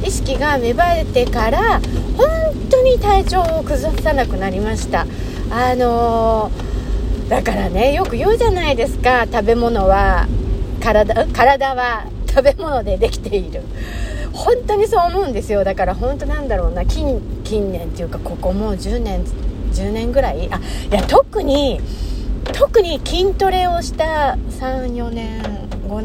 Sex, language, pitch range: female, Japanese, 195-320 Hz